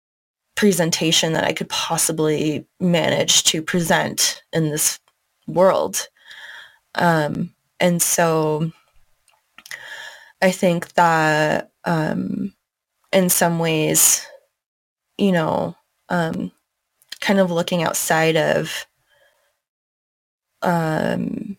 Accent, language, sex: American, English, female